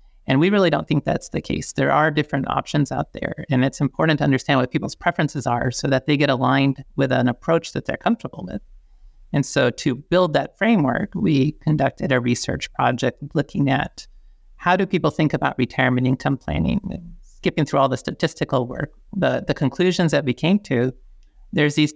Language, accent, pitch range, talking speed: English, American, 135-160 Hz, 195 wpm